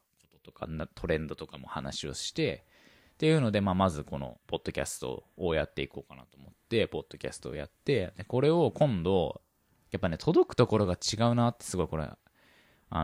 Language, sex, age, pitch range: Japanese, male, 20-39, 80-125 Hz